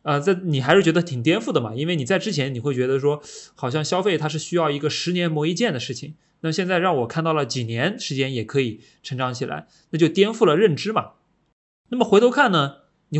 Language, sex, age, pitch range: Chinese, male, 20-39, 130-190 Hz